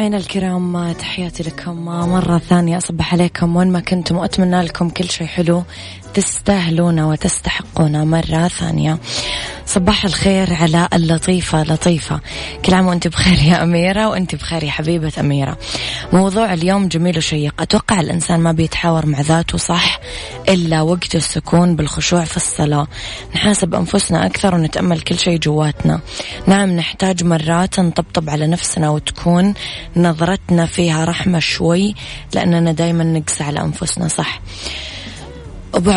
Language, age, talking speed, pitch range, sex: Arabic, 20-39, 130 wpm, 155-180 Hz, female